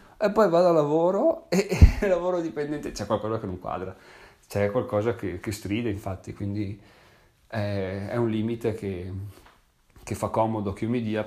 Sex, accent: male, native